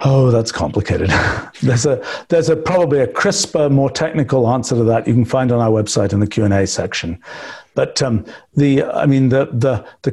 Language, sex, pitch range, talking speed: English, male, 120-150 Hz, 205 wpm